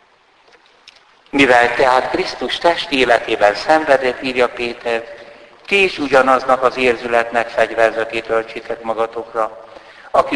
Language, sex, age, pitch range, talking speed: Hungarian, male, 60-79, 110-145 Hz, 95 wpm